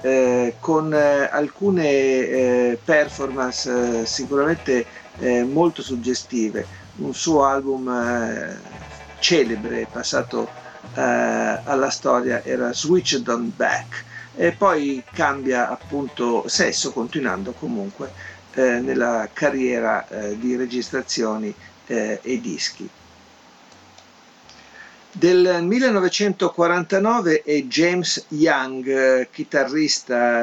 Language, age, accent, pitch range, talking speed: Italian, 50-69, native, 120-160 Hz, 90 wpm